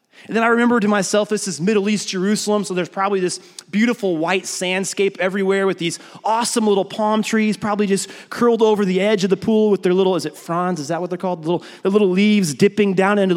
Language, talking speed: English, 240 wpm